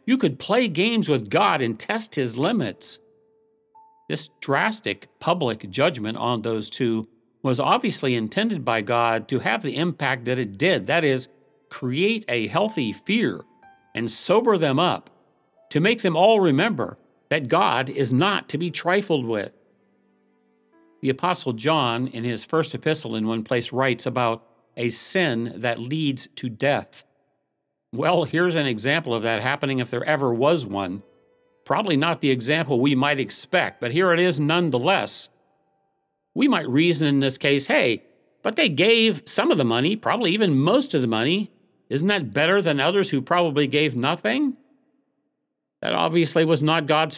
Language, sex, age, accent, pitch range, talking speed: English, male, 50-69, American, 120-175 Hz, 165 wpm